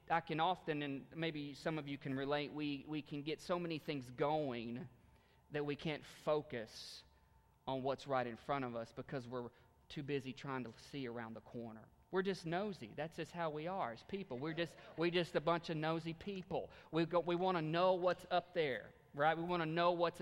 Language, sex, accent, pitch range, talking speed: English, male, American, 130-165 Hz, 215 wpm